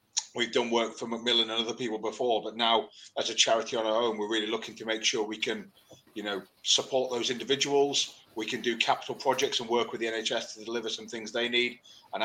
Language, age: English, 30-49